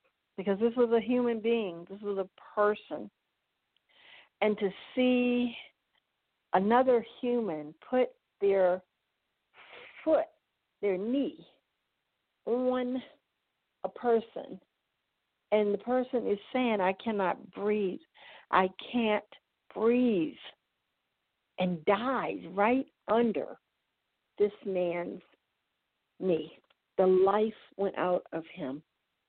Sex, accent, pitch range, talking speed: female, American, 195-250 Hz, 95 wpm